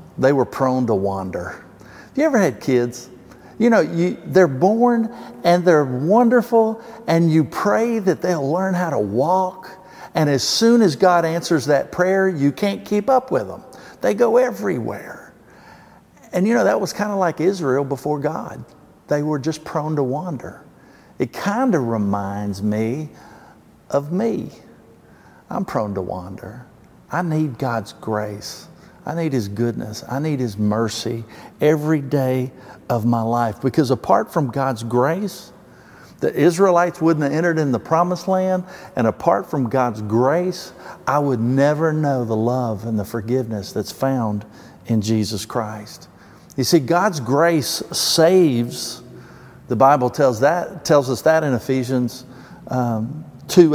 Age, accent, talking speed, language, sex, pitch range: 50-69, American, 155 wpm, English, male, 120-180 Hz